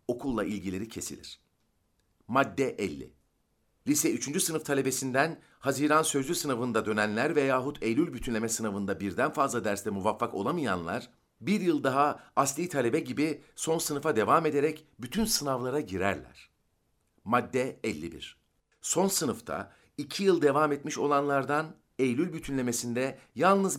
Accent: native